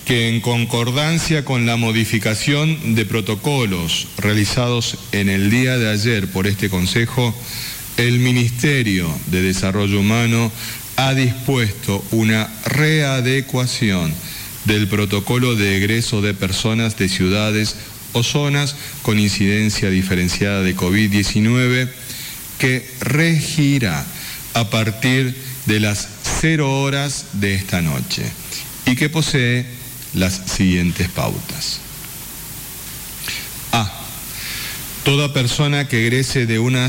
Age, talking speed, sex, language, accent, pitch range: 40-59, 105 wpm, male, Spanish, Argentinian, 100-125 Hz